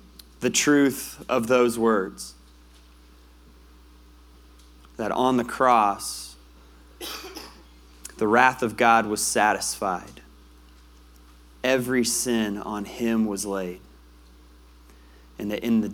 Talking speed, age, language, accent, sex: 95 wpm, 30-49, English, American, male